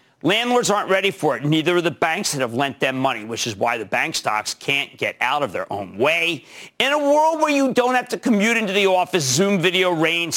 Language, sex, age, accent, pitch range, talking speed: English, male, 50-69, American, 160-245 Hz, 245 wpm